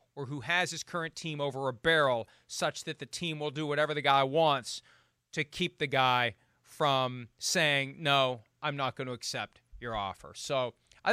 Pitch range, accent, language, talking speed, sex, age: 125-160 Hz, American, English, 190 wpm, male, 30-49